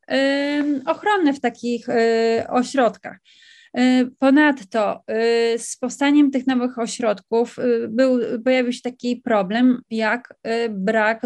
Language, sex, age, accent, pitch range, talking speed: Polish, female, 30-49, native, 225-250 Hz, 90 wpm